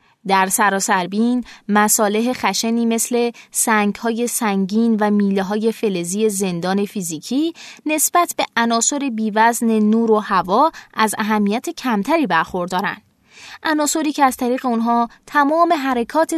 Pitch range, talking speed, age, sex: 205-265 Hz, 110 wpm, 20-39, female